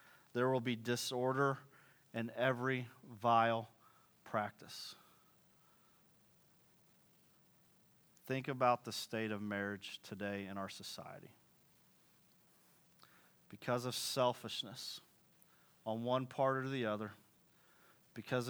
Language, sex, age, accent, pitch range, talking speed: English, male, 30-49, American, 115-135 Hz, 90 wpm